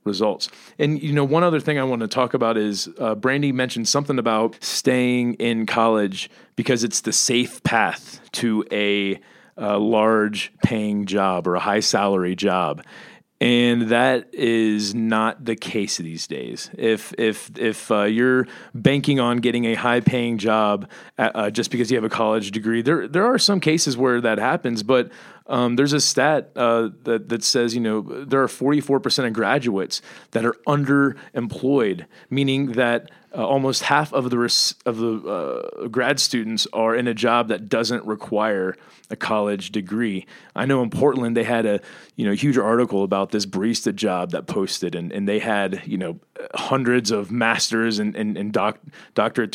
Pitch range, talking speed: 110-135 Hz, 175 wpm